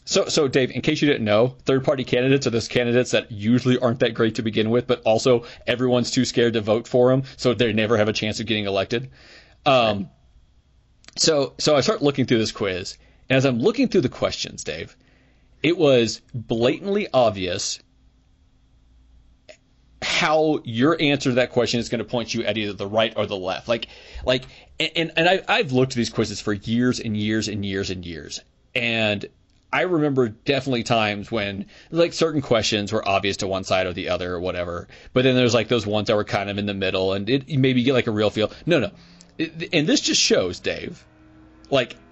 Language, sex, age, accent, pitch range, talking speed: English, male, 30-49, American, 105-135 Hz, 205 wpm